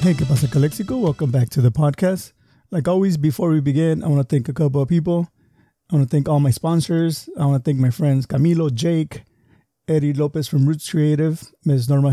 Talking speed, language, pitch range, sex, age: 220 wpm, English, 135-165 Hz, male, 30-49